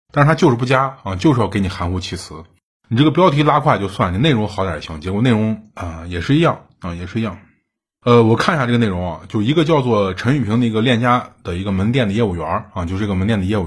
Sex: male